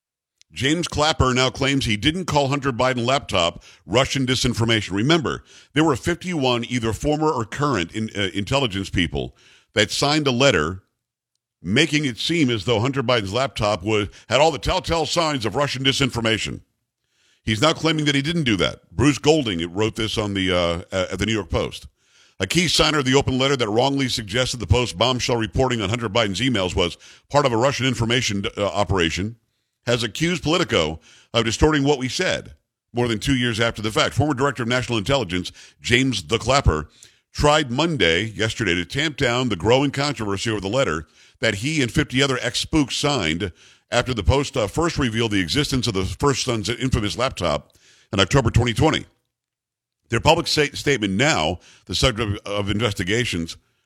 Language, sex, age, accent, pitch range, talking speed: English, male, 50-69, American, 105-140 Hz, 175 wpm